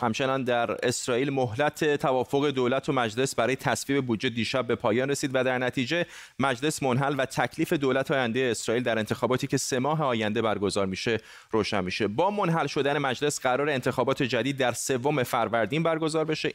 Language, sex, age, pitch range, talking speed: Persian, male, 30-49, 115-145 Hz, 170 wpm